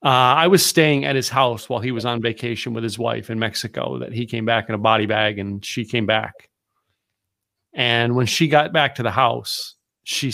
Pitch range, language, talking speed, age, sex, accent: 110-130 Hz, English, 220 wpm, 40-59, male, American